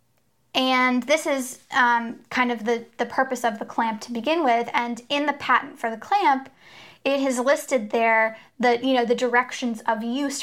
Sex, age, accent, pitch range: female, 10-29, American, 230-275 Hz